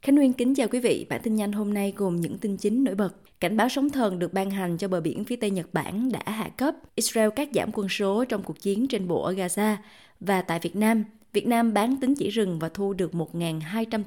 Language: Vietnamese